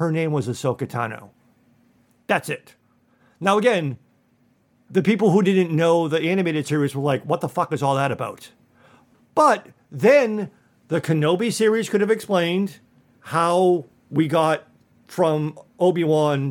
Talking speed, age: 140 wpm, 50-69